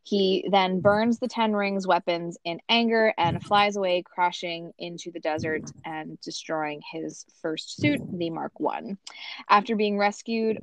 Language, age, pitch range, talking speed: English, 20-39, 170-210 Hz, 150 wpm